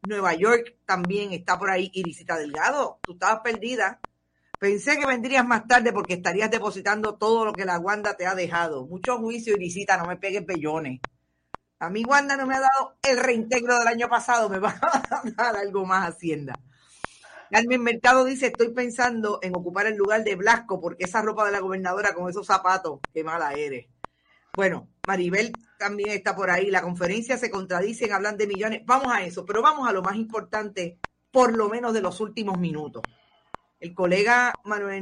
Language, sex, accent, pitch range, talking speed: Spanish, female, American, 180-225 Hz, 185 wpm